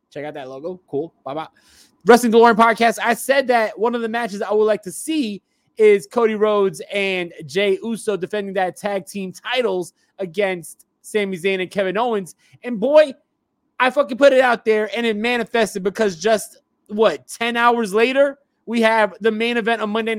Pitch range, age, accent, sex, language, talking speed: 195-240 Hz, 20-39, American, male, English, 185 wpm